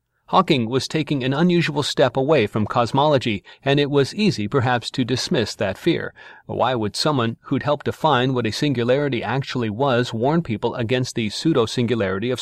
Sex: male